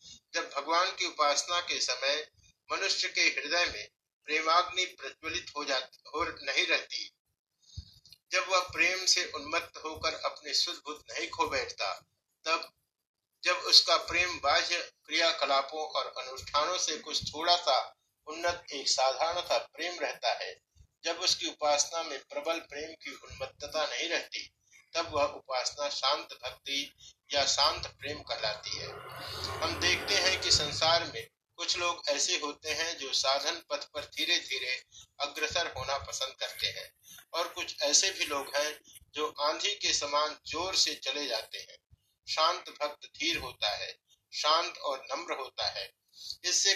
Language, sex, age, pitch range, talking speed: Hindi, male, 50-69, 145-175 Hz, 105 wpm